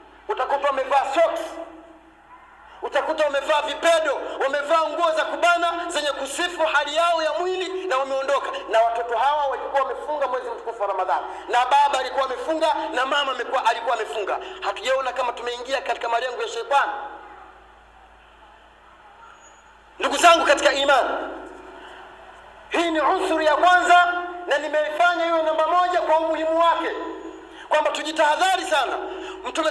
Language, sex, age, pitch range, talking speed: Swahili, male, 40-59, 270-345 Hz, 130 wpm